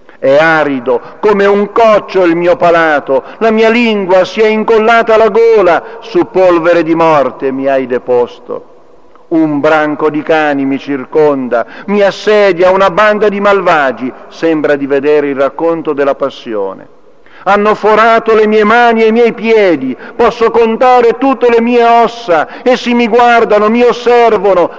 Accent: native